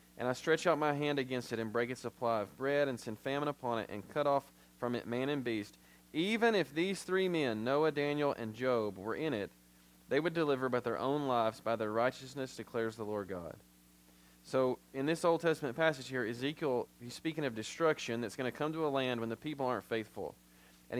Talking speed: 225 wpm